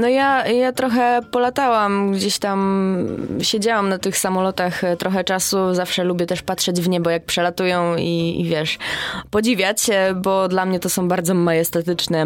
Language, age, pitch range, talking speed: Polish, 20-39, 175-230 Hz, 160 wpm